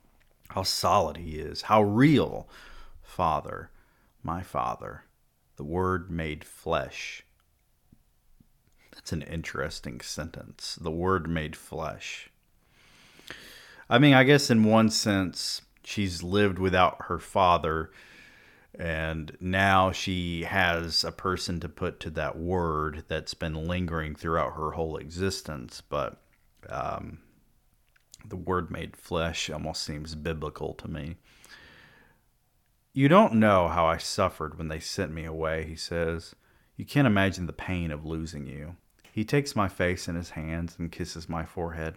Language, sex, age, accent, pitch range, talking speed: English, male, 40-59, American, 80-100 Hz, 135 wpm